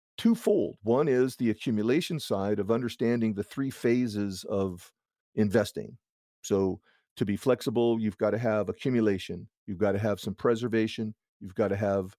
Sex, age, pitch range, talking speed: male, 40-59, 105-130 Hz, 160 wpm